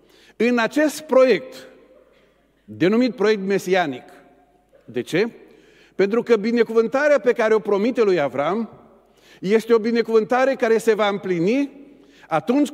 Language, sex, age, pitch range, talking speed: Romanian, male, 50-69, 200-240 Hz, 120 wpm